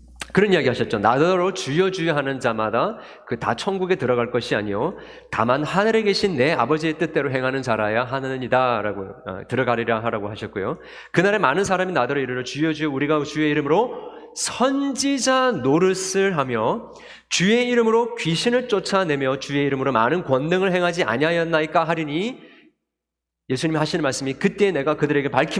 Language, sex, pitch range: Korean, male, 115-185 Hz